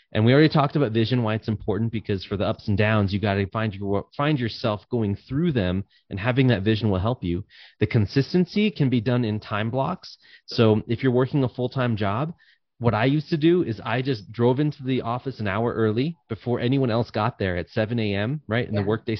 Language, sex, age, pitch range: English, male, 30-49, 110-135 Hz